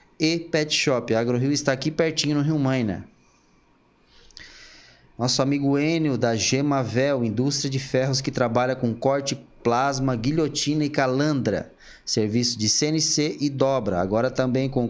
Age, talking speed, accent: 20-39, 135 wpm, Brazilian